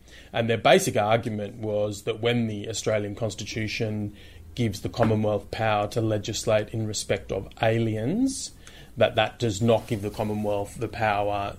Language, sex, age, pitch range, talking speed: English, male, 30-49, 105-120 Hz, 150 wpm